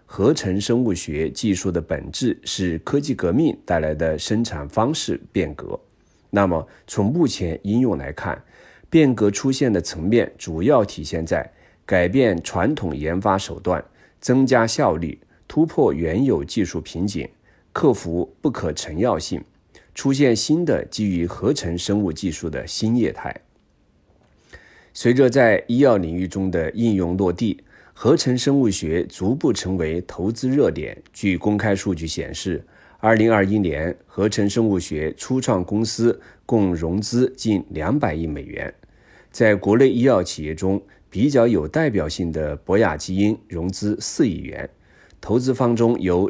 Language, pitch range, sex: Chinese, 85-115 Hz, male